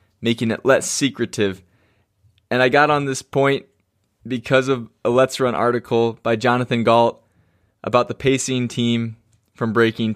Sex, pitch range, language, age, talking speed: male, 110-130 Hz, English, 20-39, 150 wpm